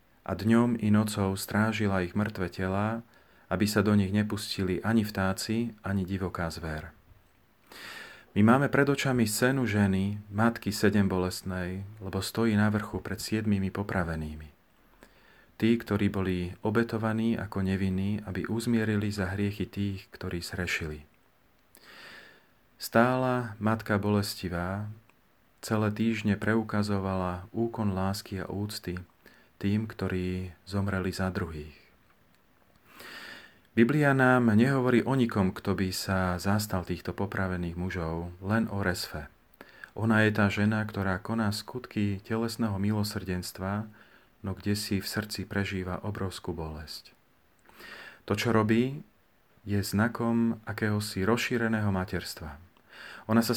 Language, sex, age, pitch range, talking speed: Slovak, male, 40-59, 95-110 Hz, 115 wpm